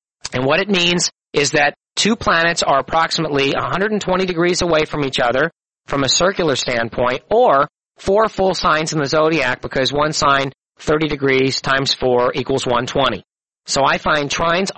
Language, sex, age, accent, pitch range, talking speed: English, male, 40-59, American, 145-180 Hz, 160 wpm